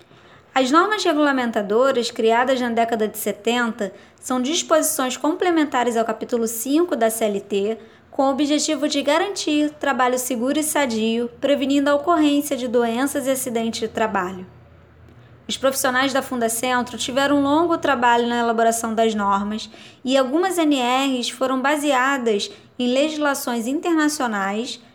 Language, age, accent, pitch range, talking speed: Portuguese, 20-39, Brazilian, 230-285 Hz, 130 wpm